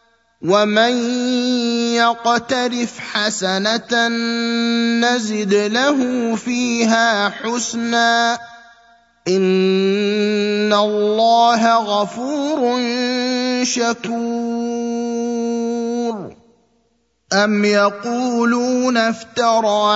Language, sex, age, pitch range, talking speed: Arabic, male, 30-49, 225-245 Hz, 40 wpm